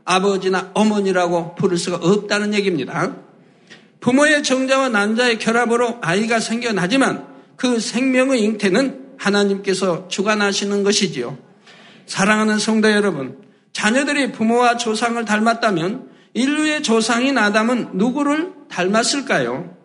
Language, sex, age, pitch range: Korean, male, 60-79, 200-245 Hz